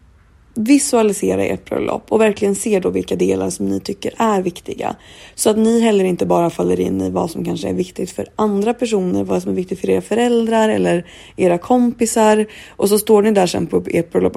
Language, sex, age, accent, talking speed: Swedish, female, 20-39, native, 205 wpm